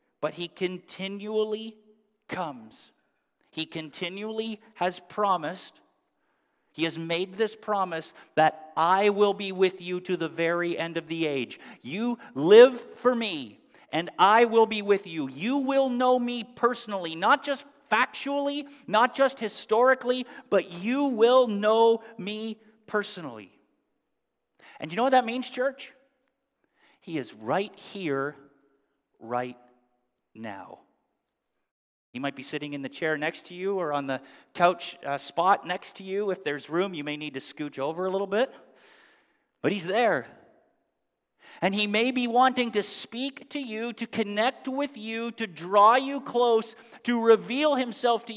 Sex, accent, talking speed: male, American, 150 wpm